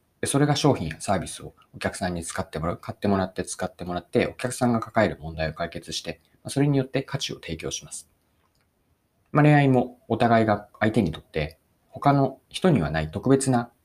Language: Japanese